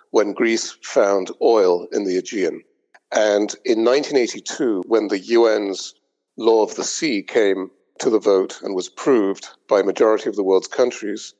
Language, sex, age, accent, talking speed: English, male, 40-59, British, 165 wpm